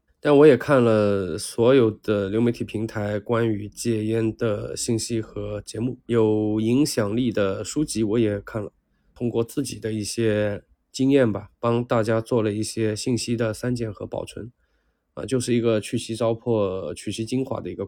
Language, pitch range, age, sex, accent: Chinese, 105-125 Hz, 20-39, male, native